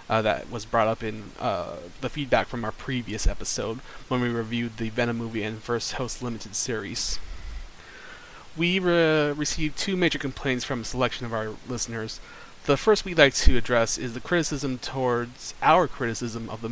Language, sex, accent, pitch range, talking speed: English, male, American, 115-135 Hz, 180 wpm